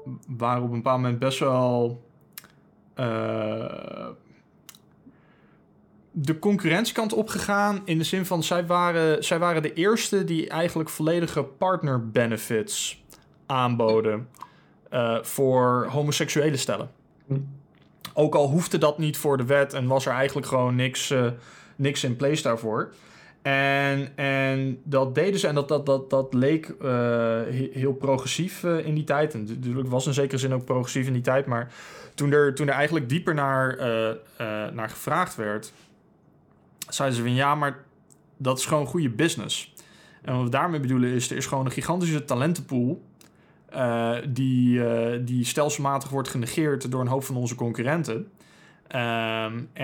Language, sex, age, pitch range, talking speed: Dutch, male, 20-39, 125-150 Hz, 150 wpm